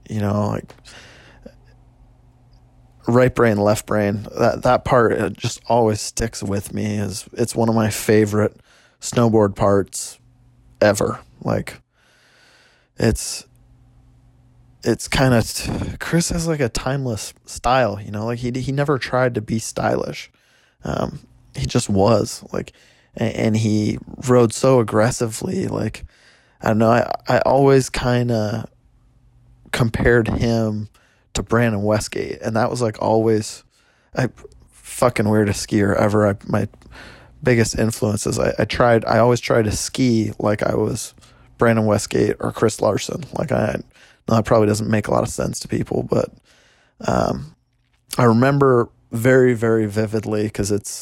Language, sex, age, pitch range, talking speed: English, male, 20-39, 105-125 Hz, 145 wpm